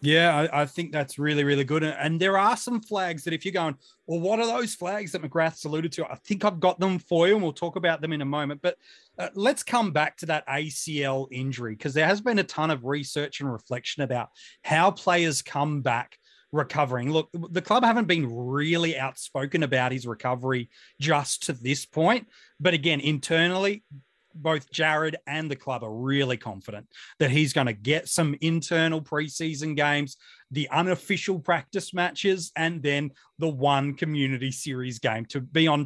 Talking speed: 190 wpm